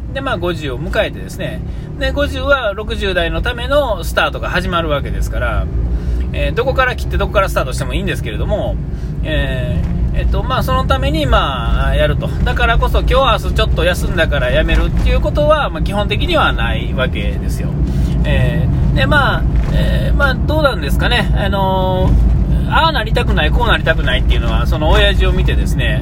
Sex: male